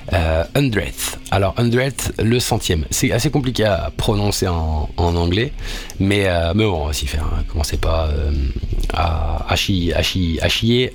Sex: male